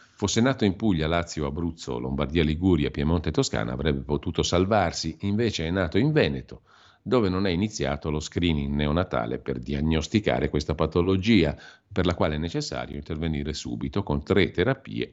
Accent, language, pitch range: native, Italian, 70-95 Hz